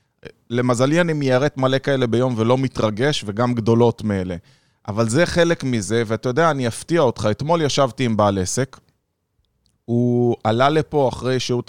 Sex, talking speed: male, 155 wpm